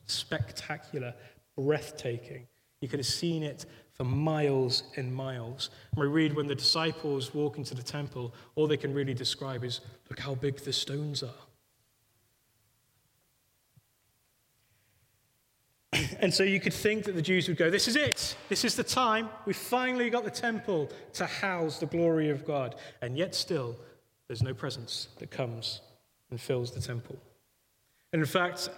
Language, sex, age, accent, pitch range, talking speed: English, male, 30-49, British, 130-155 Hz, 160 wpm